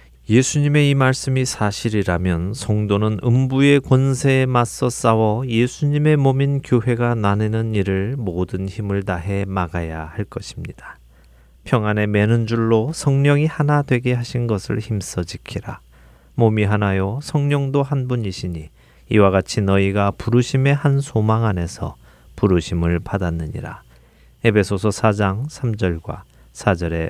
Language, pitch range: Korean, 90-125 Hz